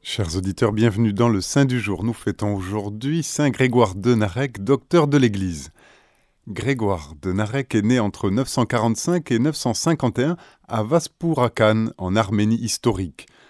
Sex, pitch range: male, 105-135 Hz